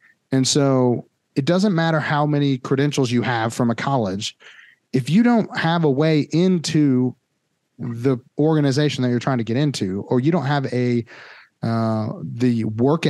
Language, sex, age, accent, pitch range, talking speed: English, male, 30-49, American, 125-160 Hz, 165 wpm